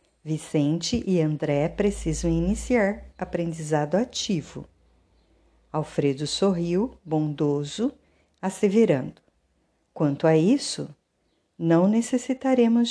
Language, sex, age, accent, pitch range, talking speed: Portuguese, female, 50-69, Brazilian, 160-215 Hz, 75 wpm